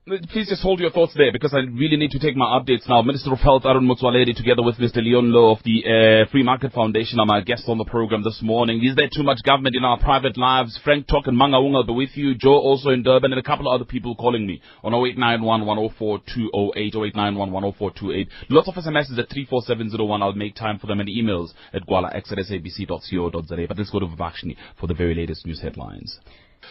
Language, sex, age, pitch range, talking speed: English, male, 30-49, 110-140 Hz, 225 wpm